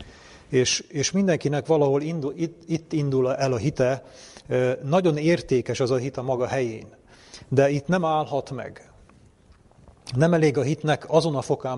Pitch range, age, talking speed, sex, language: 120-140 Hz, 40-59, 155 wpm, male, German